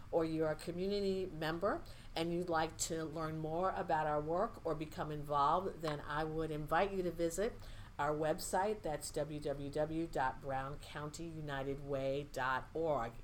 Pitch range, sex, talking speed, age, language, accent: 150-185 Hz, female, 125 wpm, 50-69, English, American